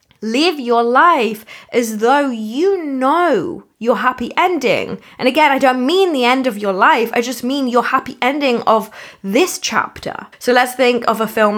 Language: English